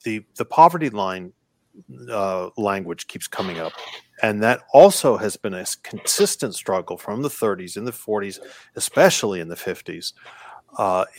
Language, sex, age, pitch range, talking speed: English, male, 40-59, 100-135 Hz, 150 wpm